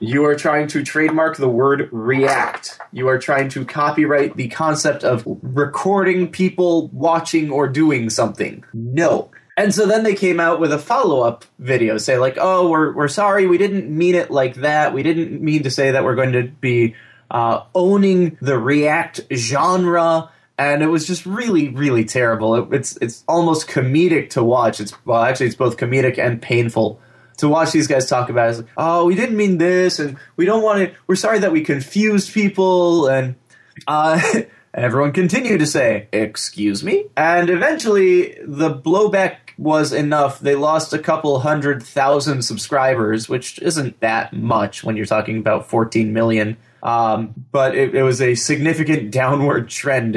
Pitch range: 120-165 Hz